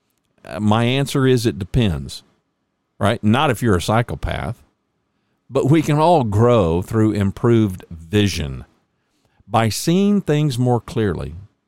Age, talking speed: 50-69, 125 wpm